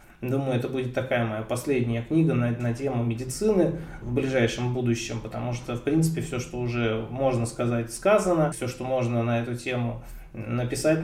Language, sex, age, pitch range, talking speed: Russian, male, 20-39, 120-145 Hz, 170 wpm